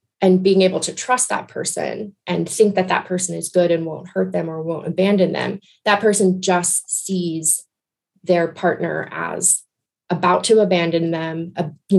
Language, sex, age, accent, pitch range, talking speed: English, female, 20-39, American, 170-195 Hz, 170 wpm